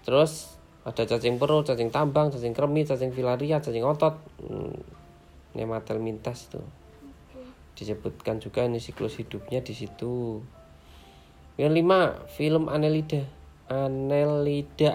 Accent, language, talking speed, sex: native, Indonesian, 110 wpm, male